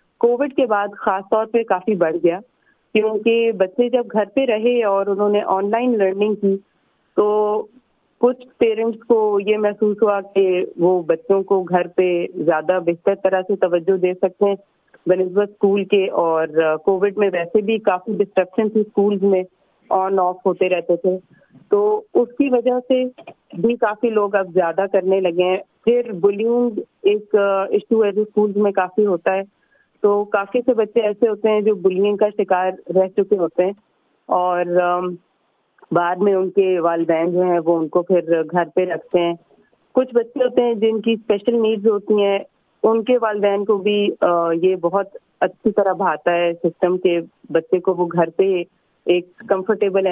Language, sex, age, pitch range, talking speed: Urdu, female, 40-59, 180-215 Hz, 175 wpm